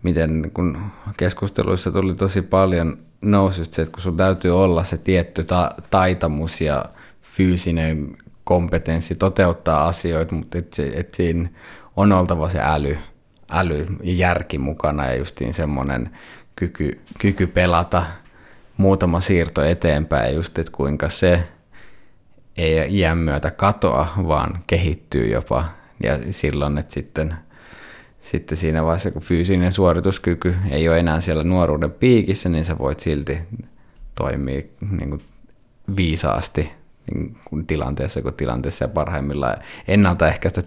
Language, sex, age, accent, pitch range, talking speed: Finnish, male, 20-39, native, 75-95 Hz, 115 wpm